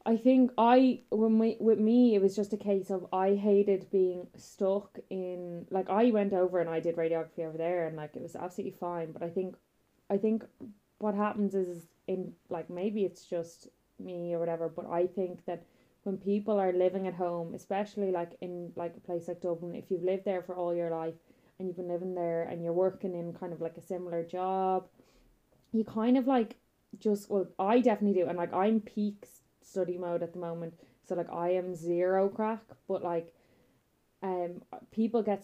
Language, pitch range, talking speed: English, 180-210 Hz, 205 wpm